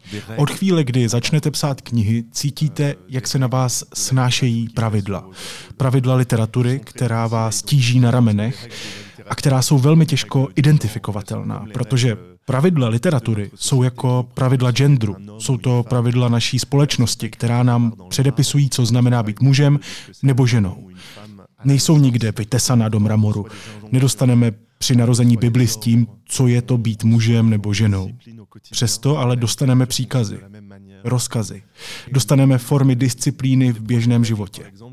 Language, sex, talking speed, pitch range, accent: Czech, male, 130 wpm, 115-135 Hz, native